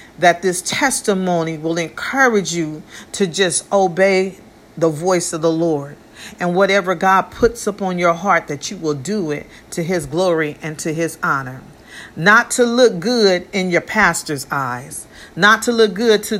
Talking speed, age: 170 wpm, 40-59